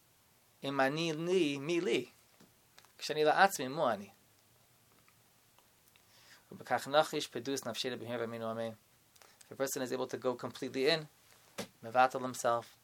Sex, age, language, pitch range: male, 20-39, English, 115-140 Hz